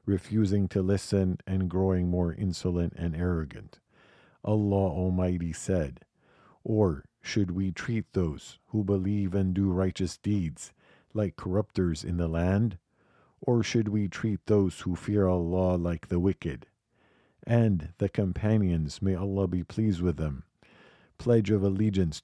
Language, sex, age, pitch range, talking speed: English, male, 50-69, 90-105 Hz, 140 wpm